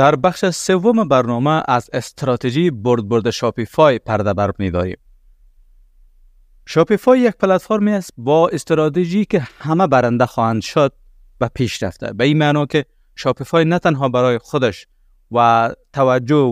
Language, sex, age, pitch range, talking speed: Persian, male, 30-49, 110-145 Hz, 130 wpm